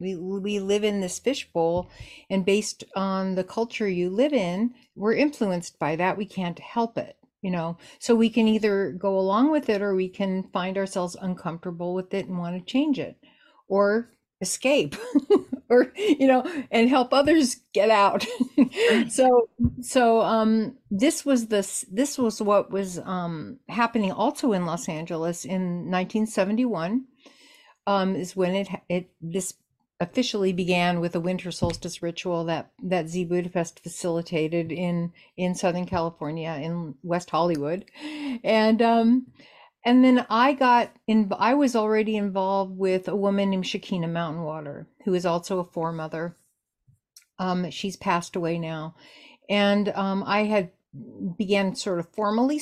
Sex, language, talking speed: female, English, 150 wpm